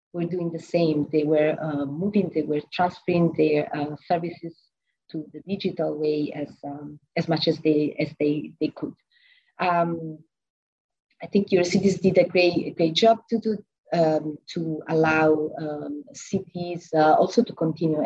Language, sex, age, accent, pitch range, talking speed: English, female, 30-49, Italian, 155-180 Hz, 165 wpm